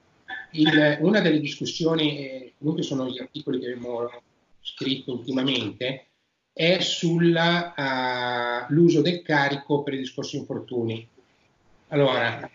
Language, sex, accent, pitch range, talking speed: Italian, male, native, 135-175 Hz, 110 wpm